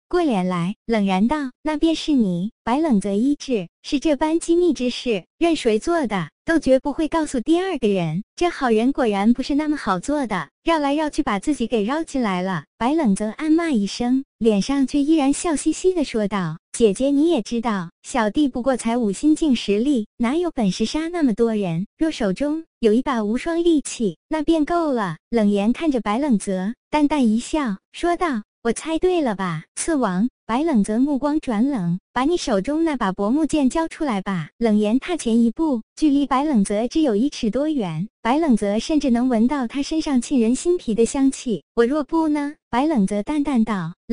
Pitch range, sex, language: 215-300 Hz, male, Chinese